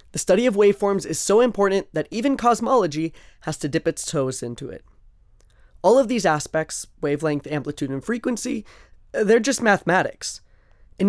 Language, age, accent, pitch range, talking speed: English, 20-39, American, 150-205 Hz, 155 wpm